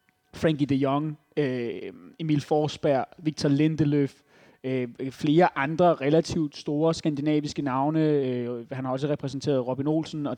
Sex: male